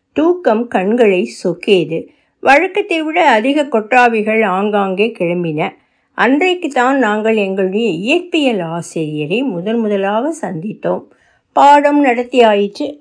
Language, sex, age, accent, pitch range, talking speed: Tamil, female, 60-79, native, 210-275 Hz, 90 wpm